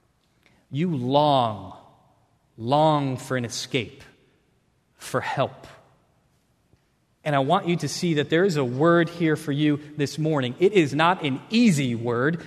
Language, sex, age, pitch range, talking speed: English, male, 30-49, 150-205 Hz, 145 wpm